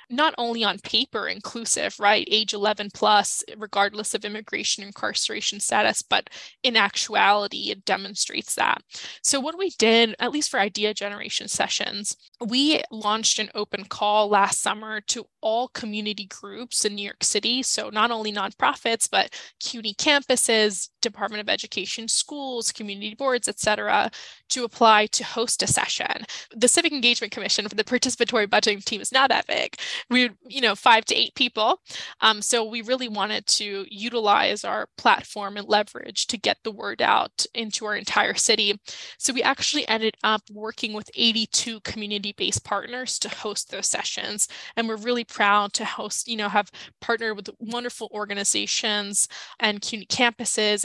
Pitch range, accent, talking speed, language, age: 210-240 Hz, American, 160 wpm, English, 10-29